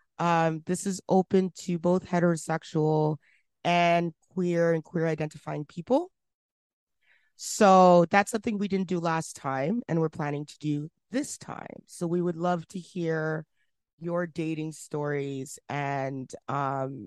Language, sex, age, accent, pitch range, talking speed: English, female, 30-49, American, 150-190 Hz, 135 wpm